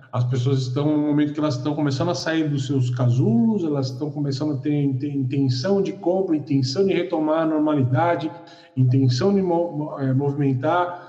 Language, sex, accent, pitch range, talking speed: Portuguese, male, Brazilian, 140-190 Hz, 170 wpm